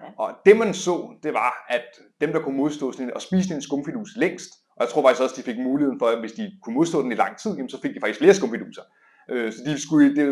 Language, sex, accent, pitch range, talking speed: Danish, male, native, 125-180 Hz, 270 wpm